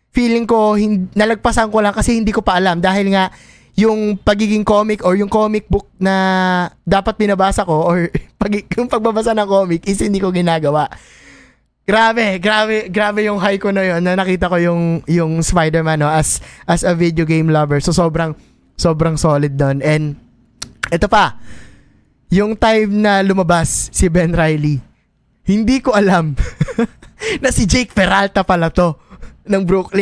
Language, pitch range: Filipino, 165-210 Hz